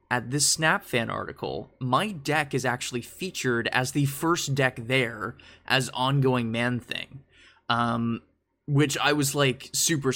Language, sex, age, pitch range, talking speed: English, male, 20-39, 120-150 Hz, 150 wpm